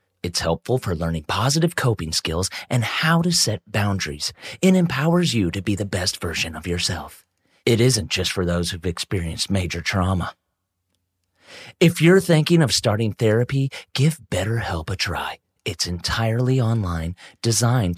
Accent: American